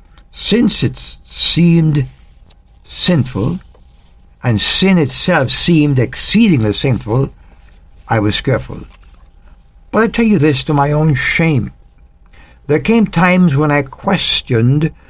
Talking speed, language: 110 wpm, English